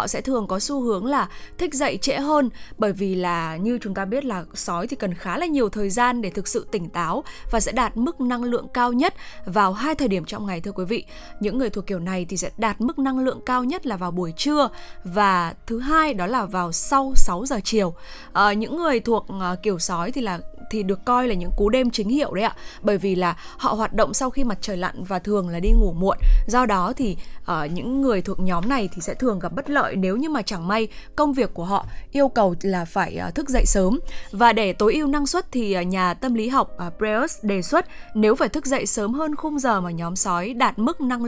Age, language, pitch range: 10-29, Vietnamese, 195-260 Hz